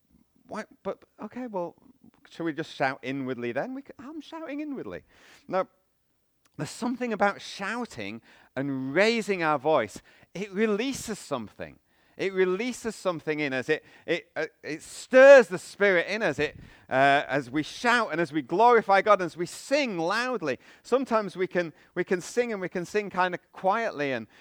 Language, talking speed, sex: English, 170 wpm, male